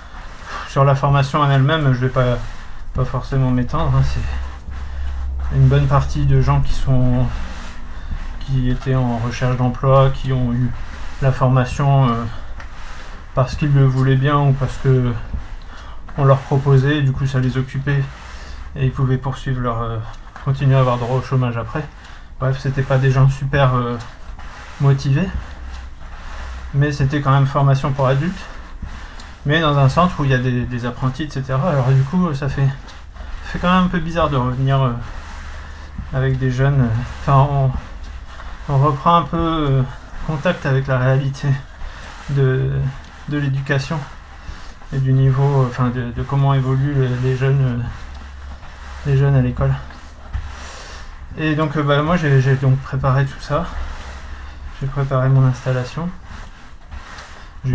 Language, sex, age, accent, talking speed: French, male, 20-39, French, 155 wpm